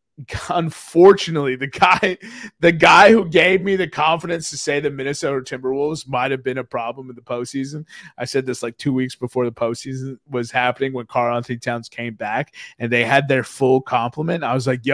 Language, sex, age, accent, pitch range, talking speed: English, male, 30-49, American, 120-150 Hz, 195 wpm